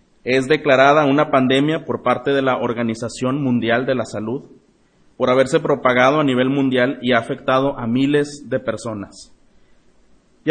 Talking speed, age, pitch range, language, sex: 155 wpm, 30-49, 120-145 Hz, Spanish, male